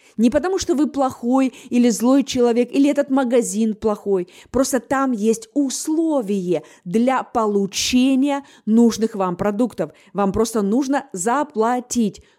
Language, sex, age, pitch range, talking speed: Russian, female, 20-39, 225-285 Hz, 120 wpm